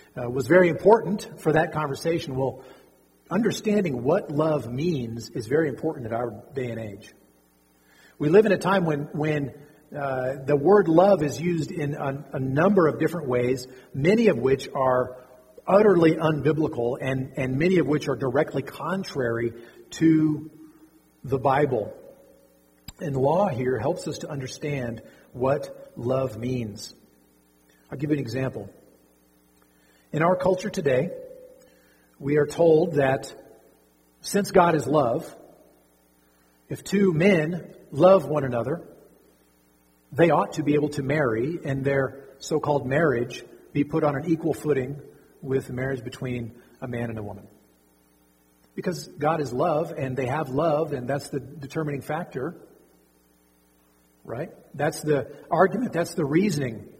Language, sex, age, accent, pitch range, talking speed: English, male, 40-59, American, 120-160 Hz, 140 wpm